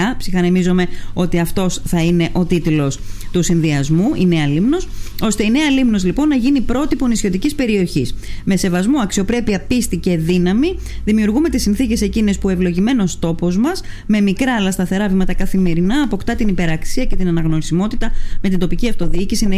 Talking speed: 165 wpm